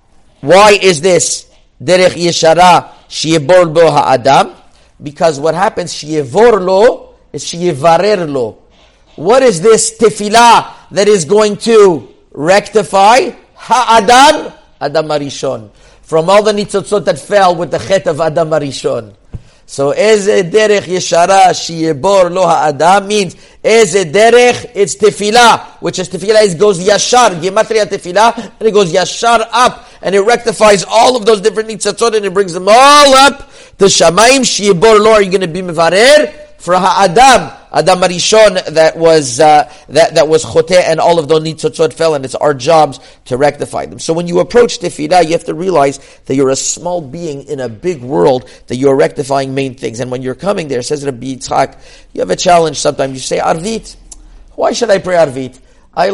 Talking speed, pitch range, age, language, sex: 150 wpm, 160-215 Hz, 50-69, English, male